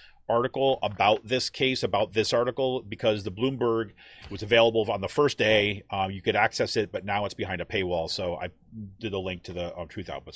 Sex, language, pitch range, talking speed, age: male, English, 90-115 Hz, 215 wpm, 30-49